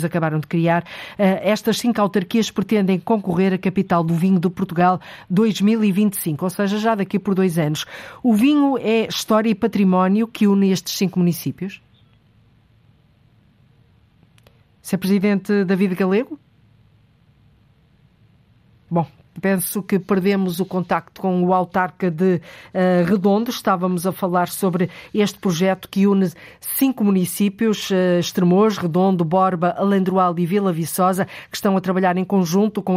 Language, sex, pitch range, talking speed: Portuguese, female, 170-200 Hz, 140 wpm